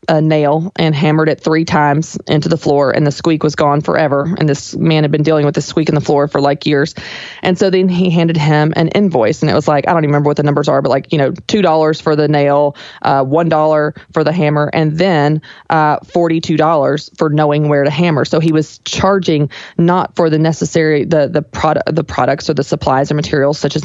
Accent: American